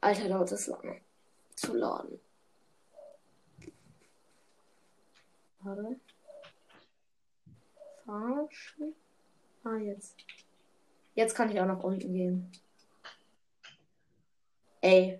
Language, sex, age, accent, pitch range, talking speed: German, female, 20-39, German, 185-255 Hz, 75 wpm